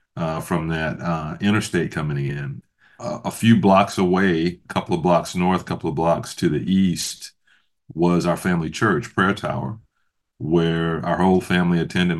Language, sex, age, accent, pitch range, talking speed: English, male, 40-59, American, 80-95 Hz, 170 wpm